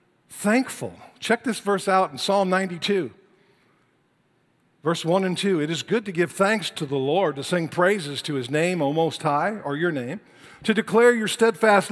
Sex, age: male, 50-69